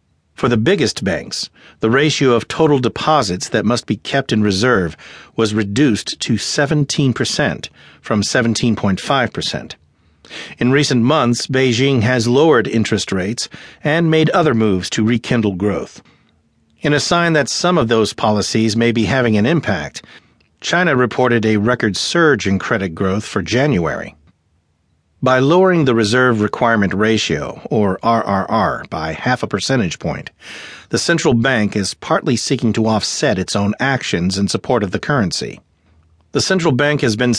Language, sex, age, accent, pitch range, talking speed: English, male, 50-69, American, 100-130 Hz, 150 wpm